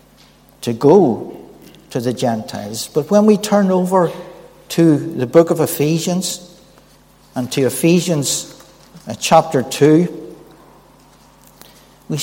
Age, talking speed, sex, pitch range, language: 60-79, 105 wpm, male, 140-180 Hz, English